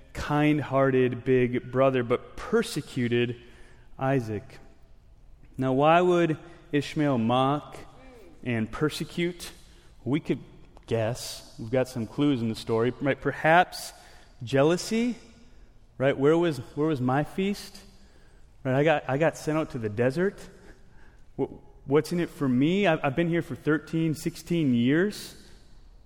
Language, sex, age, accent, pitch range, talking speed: English, male, 30-49, American, 125-160 Hz, 130 wpm